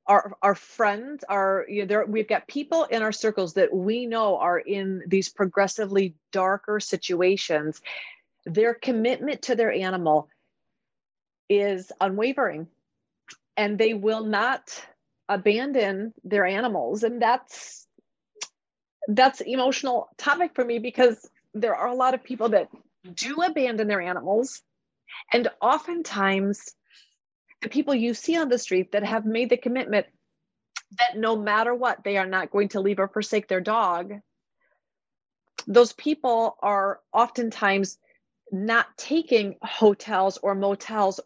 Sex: female